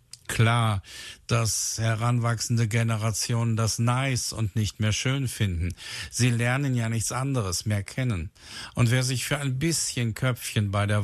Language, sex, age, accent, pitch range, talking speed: German, male, 60-79, German, 95-120 Hz, 145 wpm